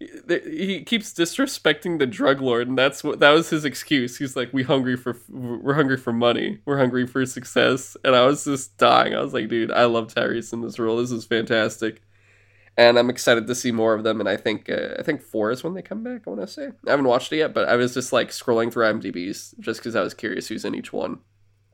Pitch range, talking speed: 110-135 Hz, 250 wpm